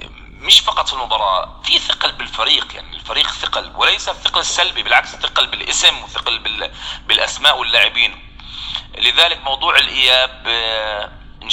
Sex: male